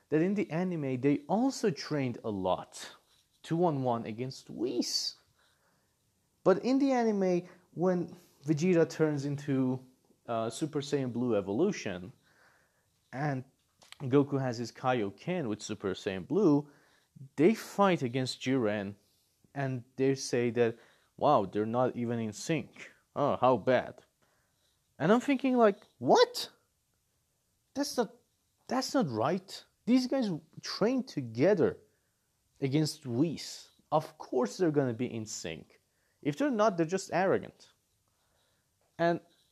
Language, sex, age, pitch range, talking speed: English, male, 30-49, 120-175 Hz, 125 wpm